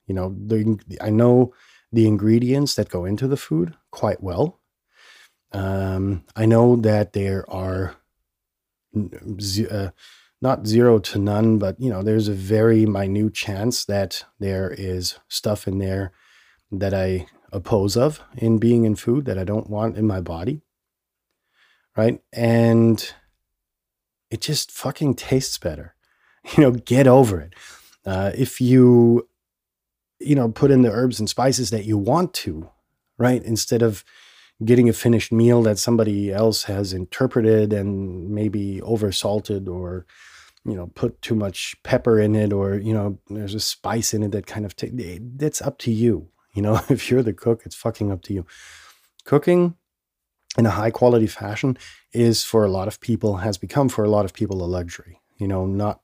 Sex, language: male, English